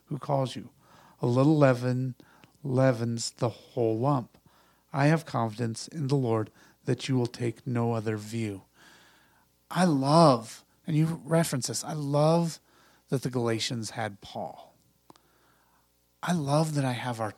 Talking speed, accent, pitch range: 145 wpm, American, 125-150 Hz